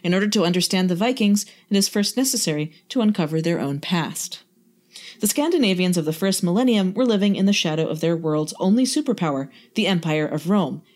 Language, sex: English, female